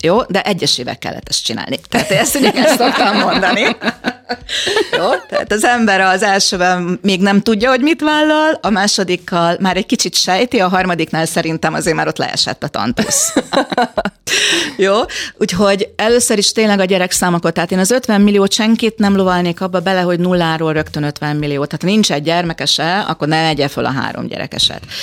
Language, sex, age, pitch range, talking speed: Hungarian, female, 30-49, 160-205 Hz, 175 wpm